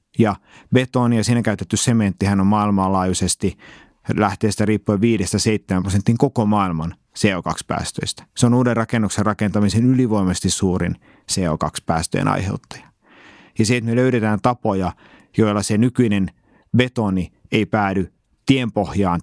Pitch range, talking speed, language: 95-120 Hz, 110 wpm, Finnish